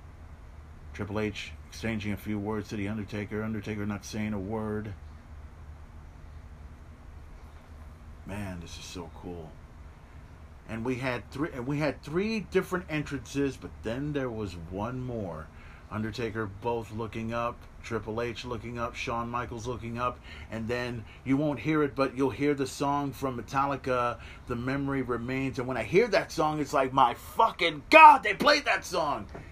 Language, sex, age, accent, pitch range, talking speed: English, male, 40-59, American, 105-155 Hz, 160 wpm